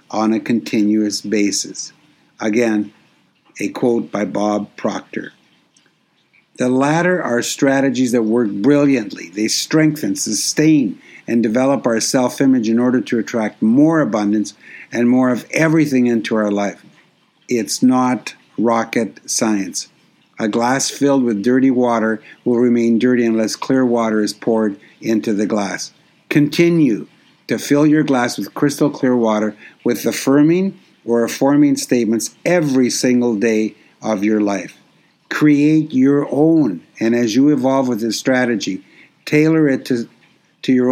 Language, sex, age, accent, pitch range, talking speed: English, male, 60-79, American, 115-145 Hz, 135 wpm